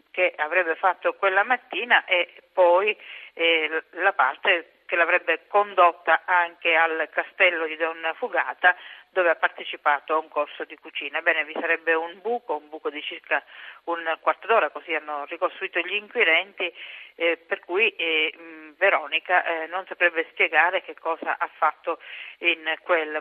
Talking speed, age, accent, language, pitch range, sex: 155 wpm, 40-59, native, Italian, 160-185 Hz, female